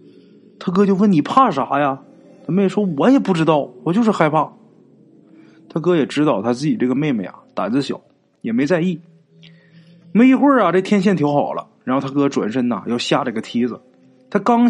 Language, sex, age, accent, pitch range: Chinese, male, 30-49, native, 155-255 Hz